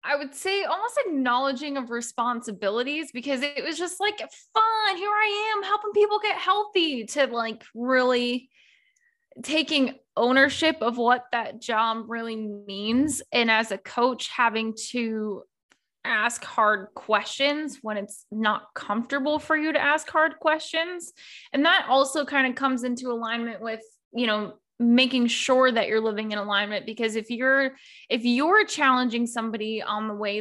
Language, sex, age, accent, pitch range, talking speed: English, female, 10-29, American, 210-270 Hz, 155 wpm